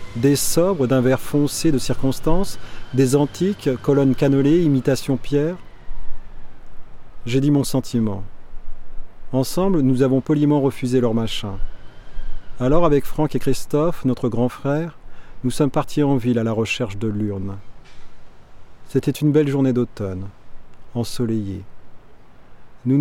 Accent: French